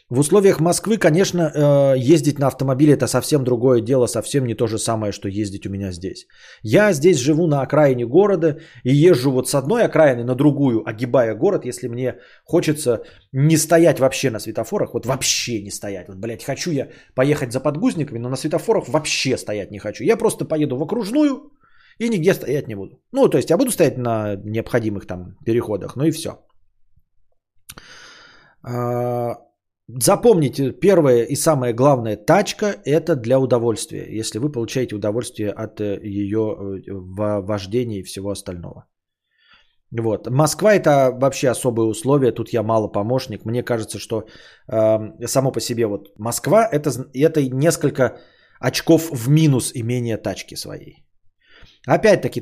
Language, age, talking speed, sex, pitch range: Bulgarian, 20-39, 155 wpm, male, 110-155 Hz